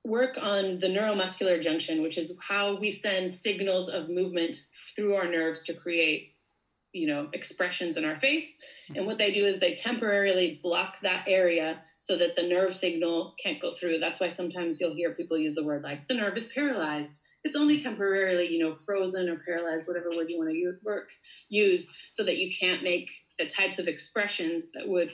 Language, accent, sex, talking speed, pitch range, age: English, American, female, 195 wpm, 165-200 Hz, 30-49